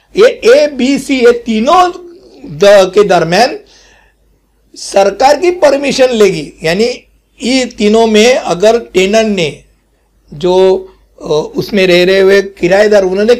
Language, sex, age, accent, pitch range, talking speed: Hindi, male, 60-79, native, 190-245 Hz, 115 wpm